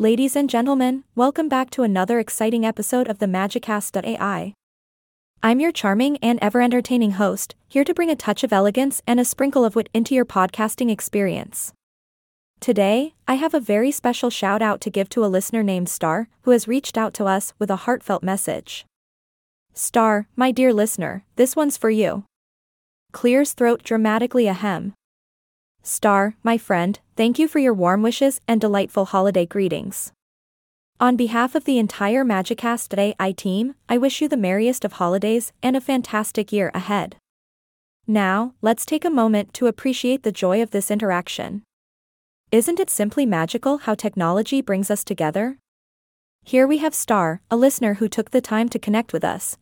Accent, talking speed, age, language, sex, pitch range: American, 165 wpm, 20-39, English, female, 200-250 Hz